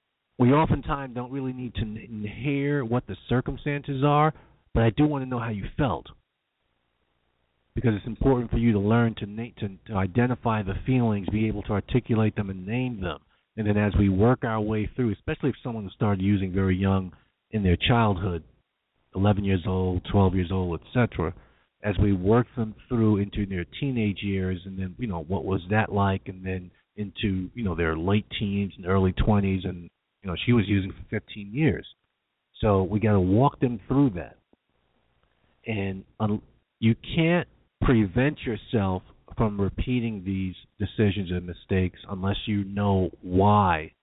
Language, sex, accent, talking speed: English, male, American, 175 wpm